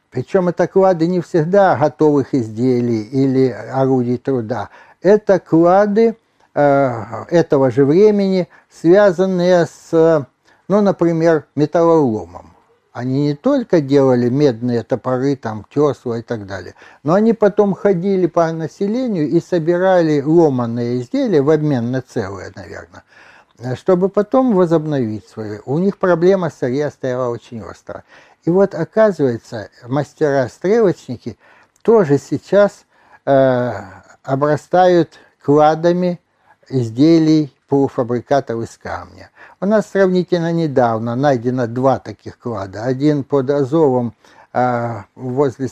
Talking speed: 110 wpm